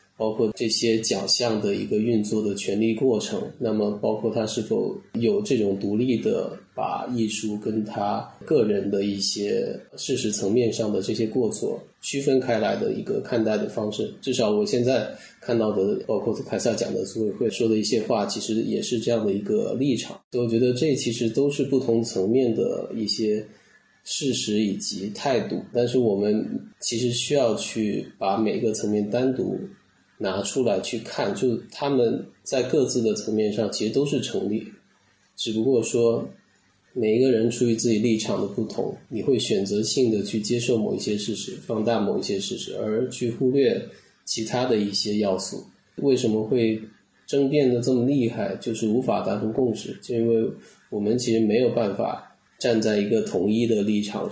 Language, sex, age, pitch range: Chinese, male, 20-39, 105-120 Hz